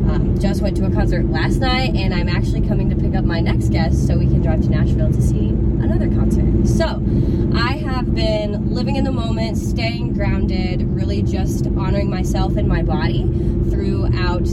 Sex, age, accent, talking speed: female, 20-39, American, 190 wpm